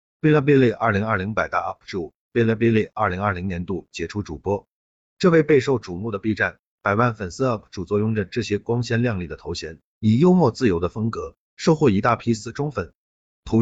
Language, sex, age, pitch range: Chinese, male, 50-69, 95-130 Hz